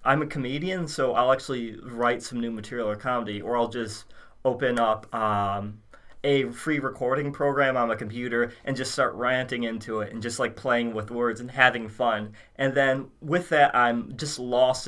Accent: American